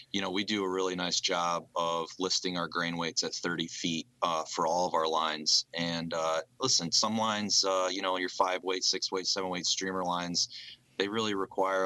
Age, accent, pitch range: 30-49, American, 85-95 Hz